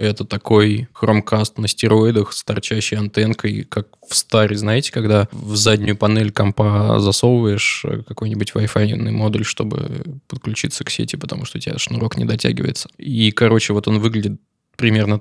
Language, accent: Russian, native